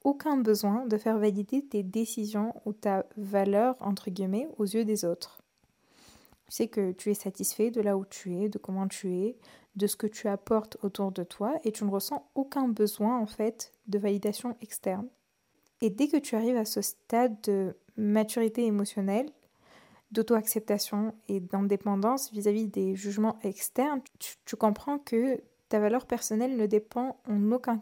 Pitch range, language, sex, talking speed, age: 205-235 Hz, French, female, 170 wpm, 20-39